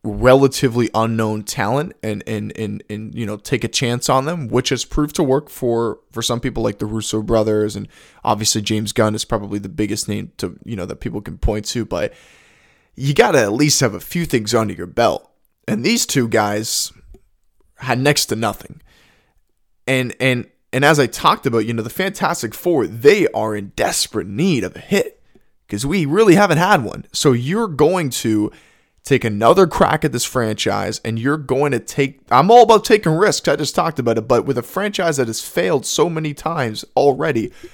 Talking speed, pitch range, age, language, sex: 200 wpm, 110-145 Hz, 20-39, English, male